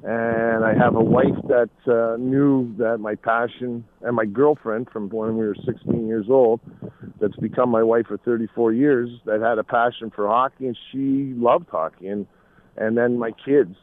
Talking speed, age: 185 wpm, 50-69